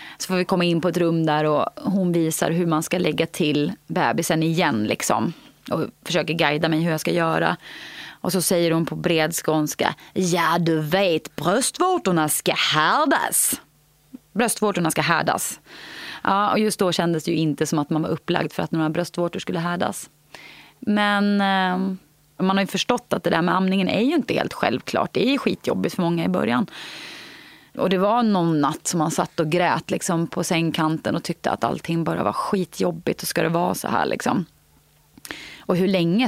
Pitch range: 165-190 Hz